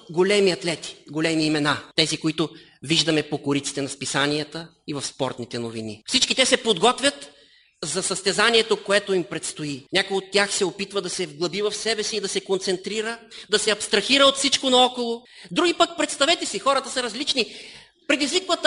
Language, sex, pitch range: Bulgarian, male, 200-280 Hz